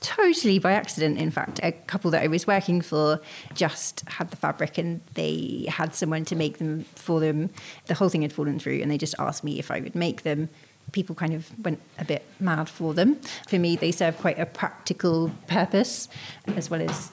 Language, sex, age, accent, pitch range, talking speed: English, female, 30-49, British, 160-190 Hz, 215 wpm